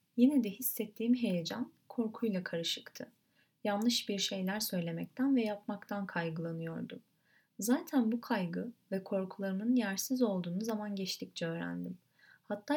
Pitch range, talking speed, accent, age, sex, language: 185-240 Hz, 115 wpm, native, 30-49, female, Turkish